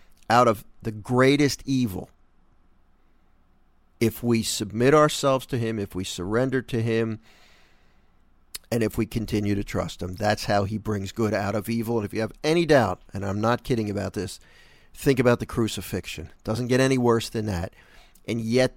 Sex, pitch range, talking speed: male, 105-130 Hz, 180 wpm